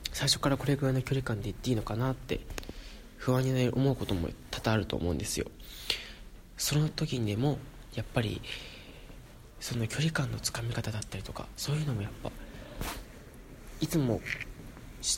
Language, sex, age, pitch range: Japanese, male, 20-39, 105-130 Hz